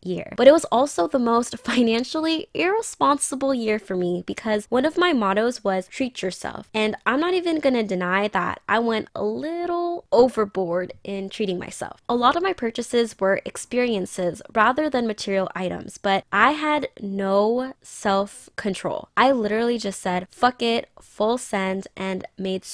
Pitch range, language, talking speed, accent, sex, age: 195-255 Hz, English, 160 wpm, American, female, 10-29